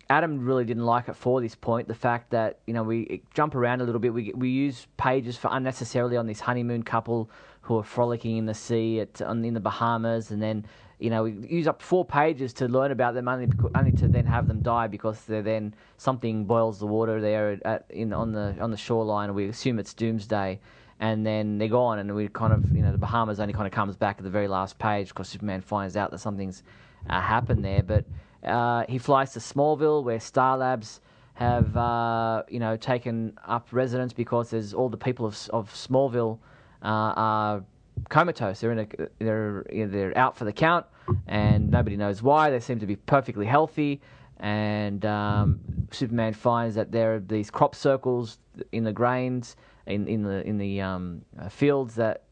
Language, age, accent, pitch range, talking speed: English, 20-39, Australian, 105-125 Hz, 205 wpm